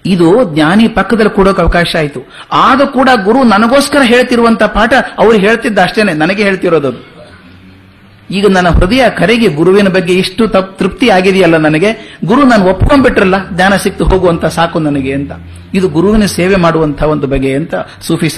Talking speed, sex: 145 wpm, male